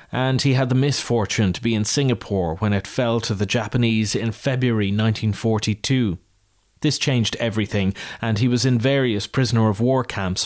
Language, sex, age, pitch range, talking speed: English, male, 30-49, 100-130 Hz, 160 wpm